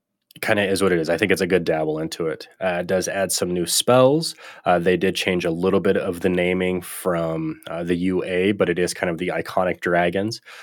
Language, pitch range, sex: English, 90-100 Hz, male